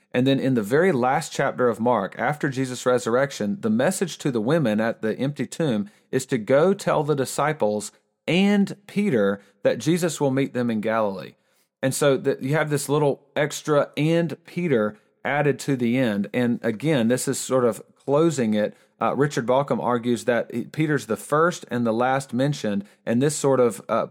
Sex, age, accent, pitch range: male, 40-59, American, 120-160 Hz